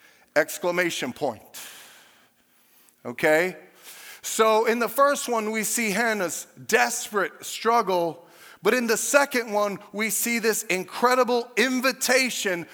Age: 40-59